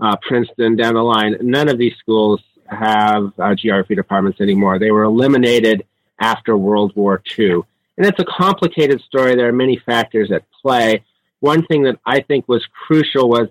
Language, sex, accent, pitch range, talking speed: English, male, American, 105-135 Hz, 180 wpm